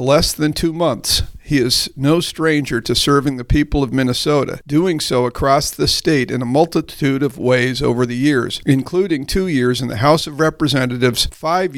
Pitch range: 130-150 Hz